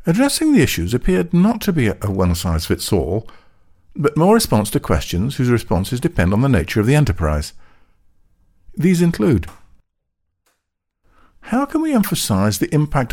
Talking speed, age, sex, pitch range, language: 155 wpm, 50-69, male, 95-145 Hz, English